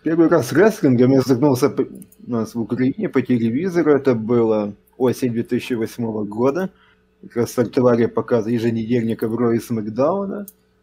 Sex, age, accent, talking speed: male, 20-39, native, 135 wpm